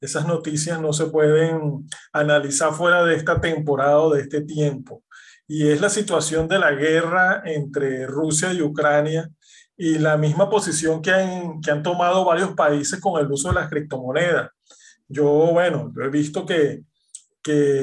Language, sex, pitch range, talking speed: Spanish, male, 155-195 Hz, 165 wpm